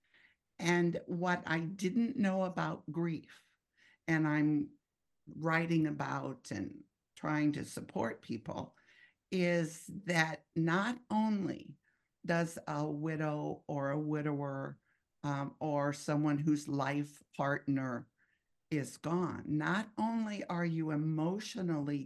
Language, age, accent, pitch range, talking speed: English, 60-79, American, 155-195 Hz, 105 wpm